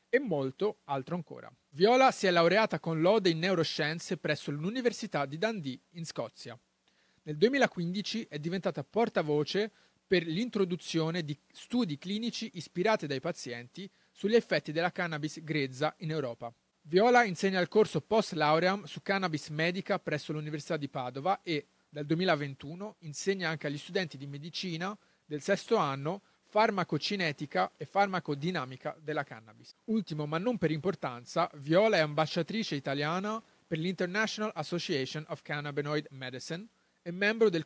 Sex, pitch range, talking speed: male, 150-195 Hz, 135 wpm